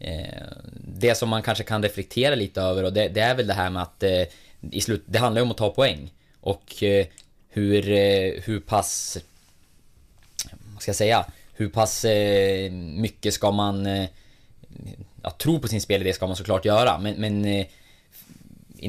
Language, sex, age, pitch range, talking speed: Swedish, male, 20-39, 95-110 Hz, 145 wpm